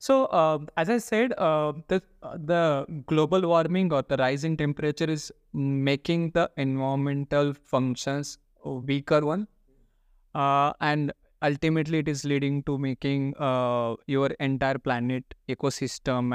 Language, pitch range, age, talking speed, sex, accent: Hindi, 135-170 Hz, 20-39, 130 wpm, male, native